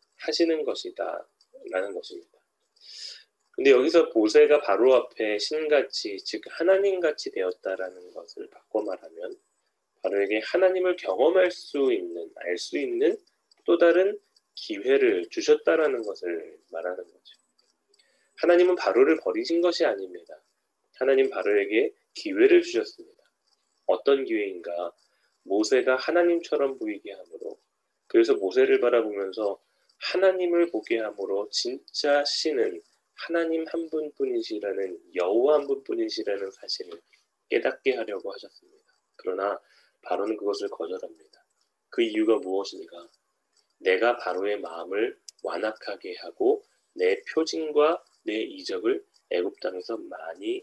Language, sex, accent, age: Korean, male, native, 30-49